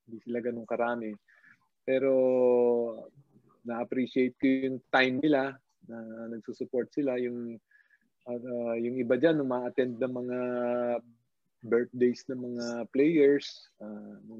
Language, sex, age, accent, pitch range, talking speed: Filipino, male, 20-39, native, 115-135 Hz, 120 wpm